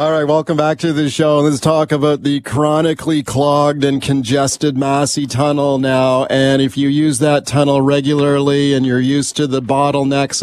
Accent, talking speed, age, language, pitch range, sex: American, 180 wpm, 50-69, English, 140-160 Hz, male